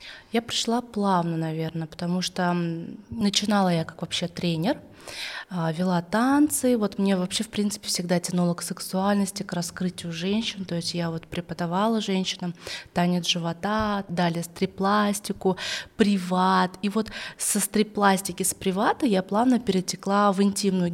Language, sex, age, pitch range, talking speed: Russian, female, 20-39, 175-220 Hz, 135 wpm